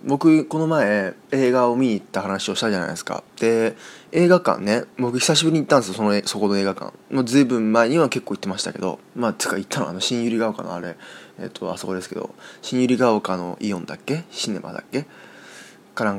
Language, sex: Japanese, male